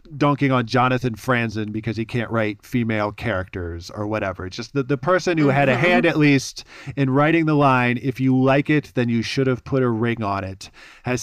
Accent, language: American, English